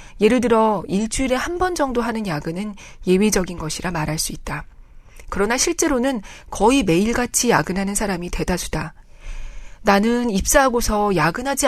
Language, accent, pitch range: Korean, native, 185-245 Hz